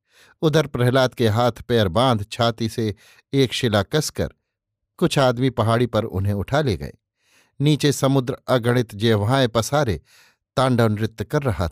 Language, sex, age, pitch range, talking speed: Hindi, male, 50-69, 110-140 Hz, 145 wpm